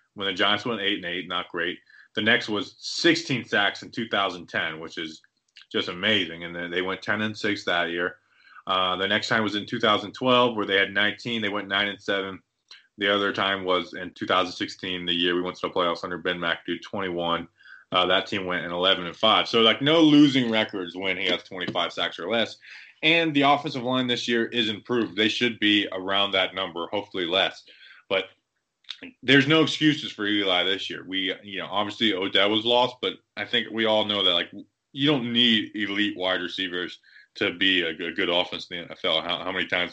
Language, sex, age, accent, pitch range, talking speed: English, male, 20-39, American, 90-120 Hz, 215 wpm